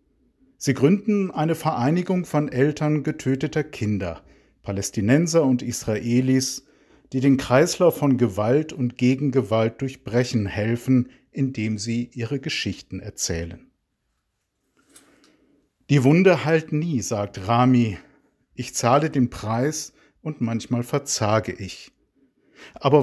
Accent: German